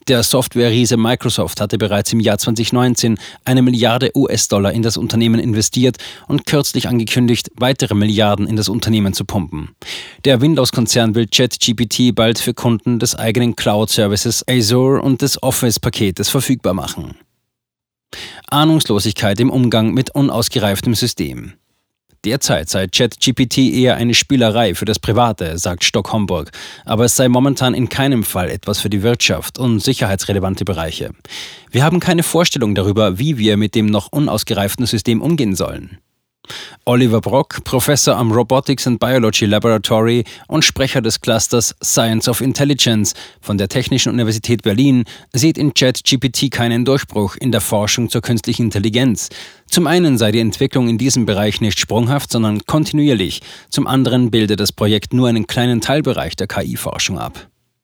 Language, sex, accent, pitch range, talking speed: German, male, German, 110-130 Hz, 145 wpm